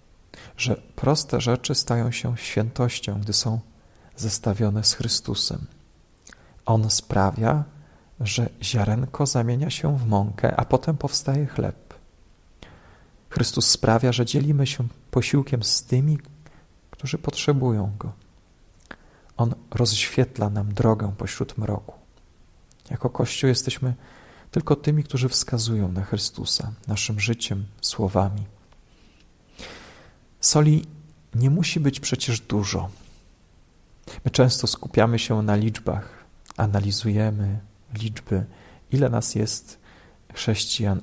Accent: native